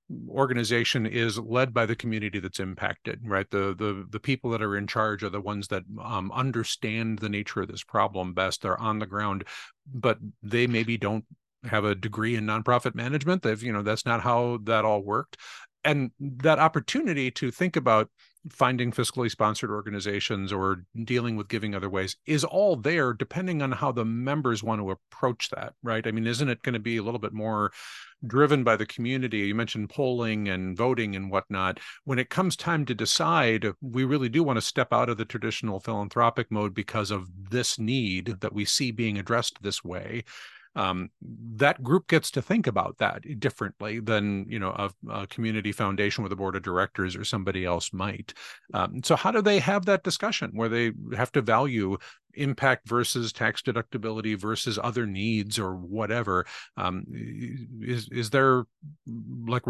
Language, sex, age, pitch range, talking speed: English, male, 50-69, 105-130 Hz, 185 wpm